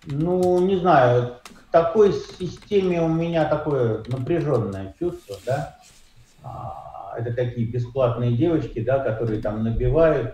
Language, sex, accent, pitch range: Russian, male, native, 115-145 Hz